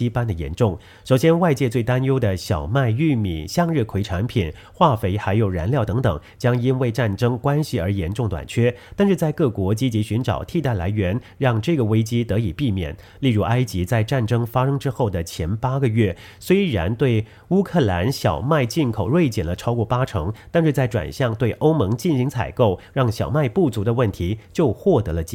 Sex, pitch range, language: male, 100-135 Hz, English